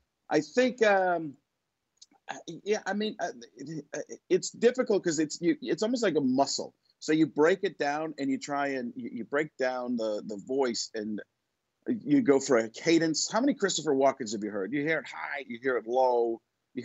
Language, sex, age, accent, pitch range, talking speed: English, male, 50-69, American, 125-185 Hz, 190 wpm